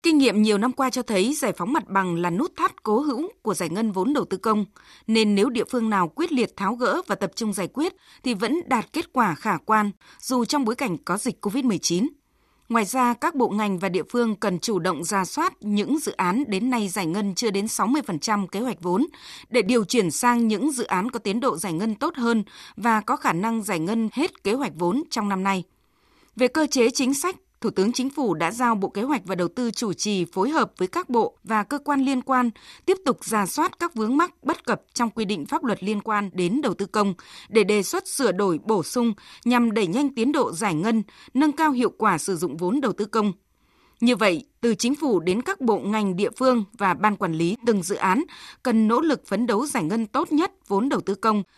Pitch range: 200-270 Hz